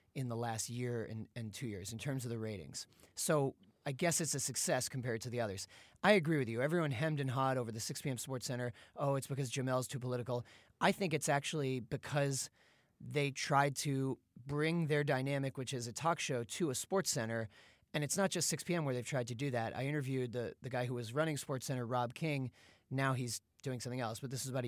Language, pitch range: English, 125-160 Hz